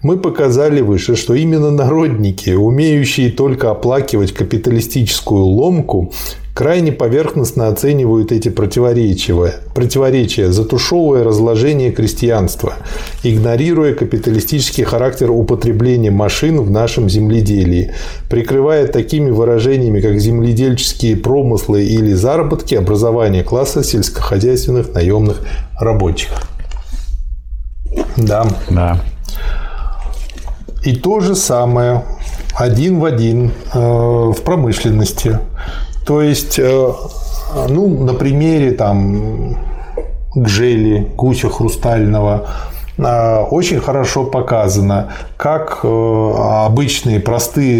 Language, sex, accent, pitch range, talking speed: Russian, male, native, 110-130 Hz, 90 wpm